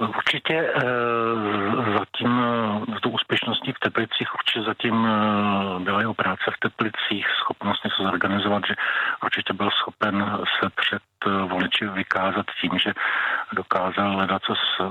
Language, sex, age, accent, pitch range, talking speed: Czech, male, 50-69, native, 95-105 Hz, 135 wpm